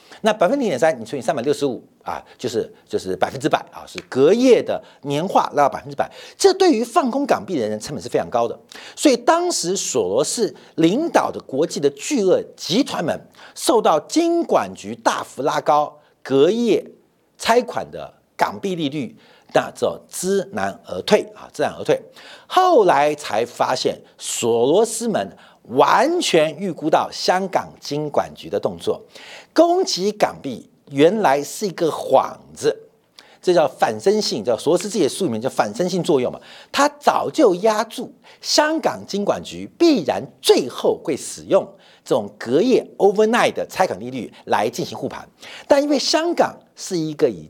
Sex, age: male, 50-69